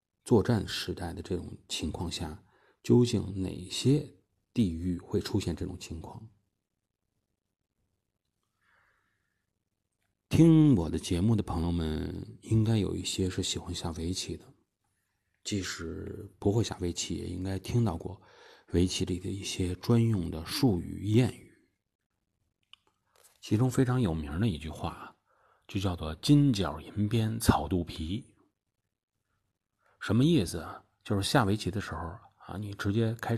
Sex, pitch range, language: male, 90-105 Hz, Chinese